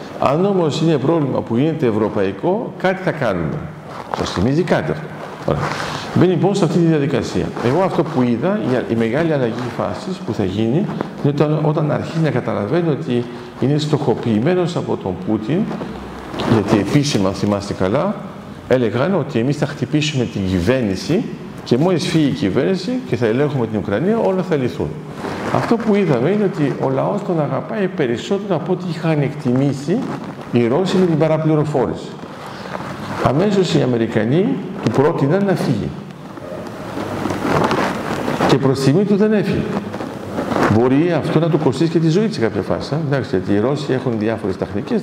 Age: 50-69